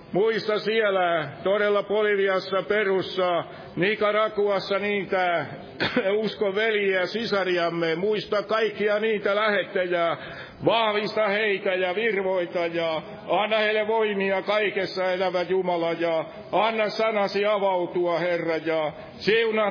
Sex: male